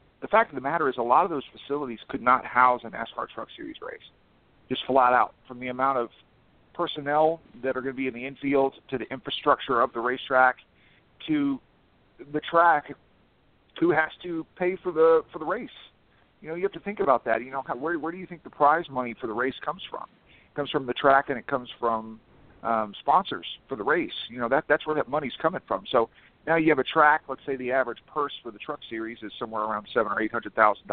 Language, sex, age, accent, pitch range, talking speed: English, male, 50-69, American, 125-165 Hz, 230 wpm